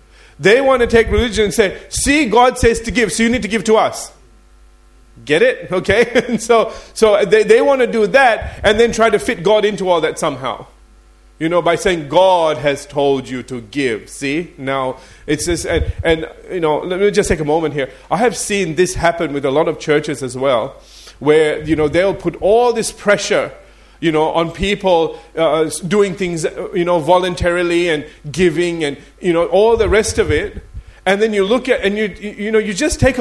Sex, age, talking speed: male, 30-49, 210 wpm